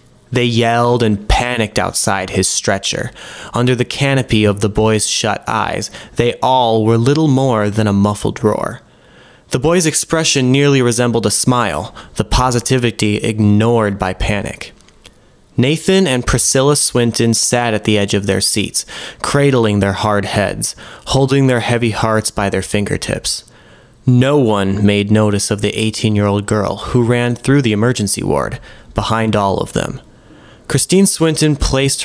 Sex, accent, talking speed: male, American, 150 wpm